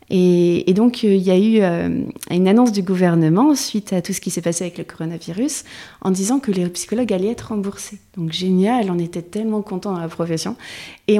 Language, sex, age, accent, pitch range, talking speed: French, female, 30-49, French, 185-230 Hz, 220 wpm